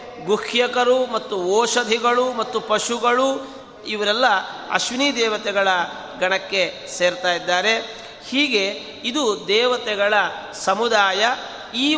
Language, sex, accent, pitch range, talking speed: Kannada, male, native, 190-245 Hz, 80 wpm